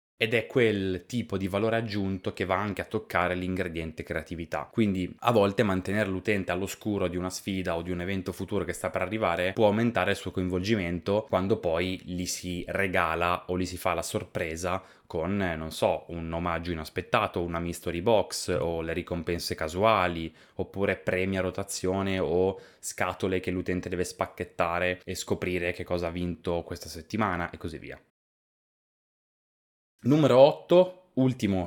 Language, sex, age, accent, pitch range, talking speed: Italian, male, 20-39, native, 90-100 Hz, 160 wpm